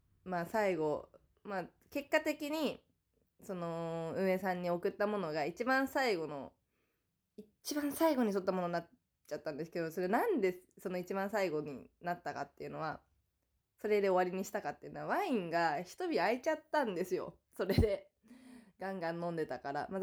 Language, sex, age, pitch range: Japanese, female, 20-39, 175-260 Hz